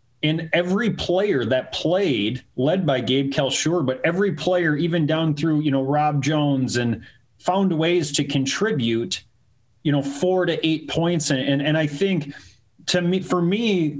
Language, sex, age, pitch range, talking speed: English, male, 30-49, 130-170 Hz, 165 wpm